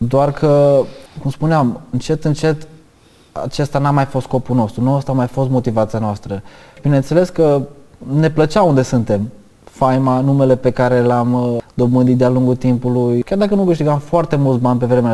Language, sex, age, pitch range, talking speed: Romanian, male, 20-39, 120-150 Hz, 170 wpm